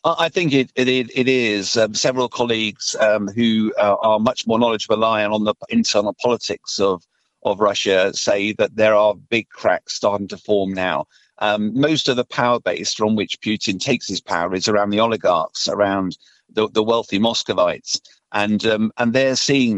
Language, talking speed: English, 180 wpm